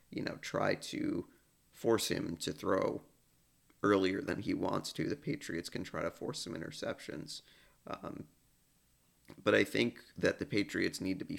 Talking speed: 165 wpm